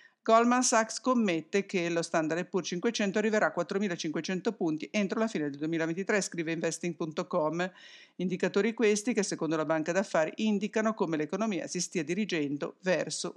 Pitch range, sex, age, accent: 165-205 Hz, female, 50-69, Italian